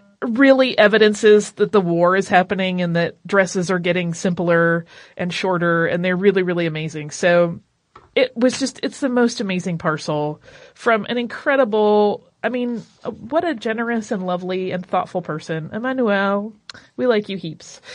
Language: English